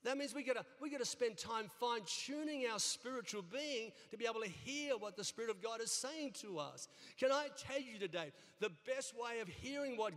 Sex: male